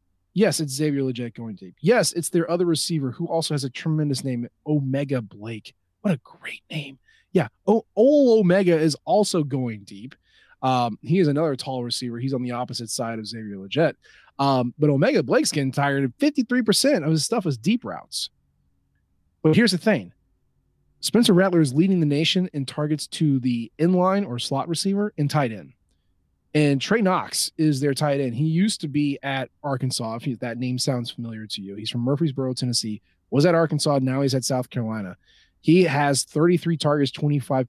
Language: English